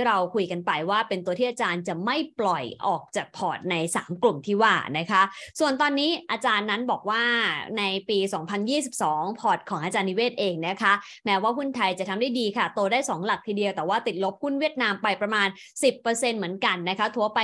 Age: 20-39